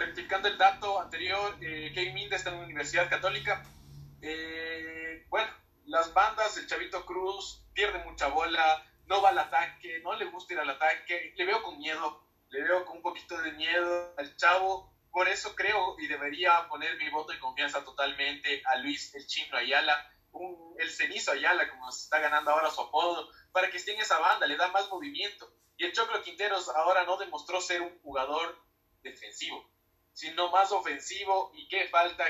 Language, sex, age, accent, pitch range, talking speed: Spanish, male, 20-39, Mexican, 145-185 Hz, 180 wpm